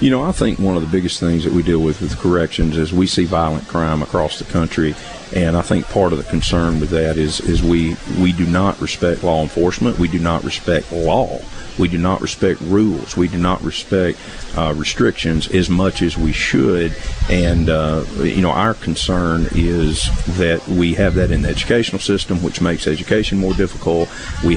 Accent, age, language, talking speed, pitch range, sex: American, 40-59, English, 205 wpm, 80-95 Hz, male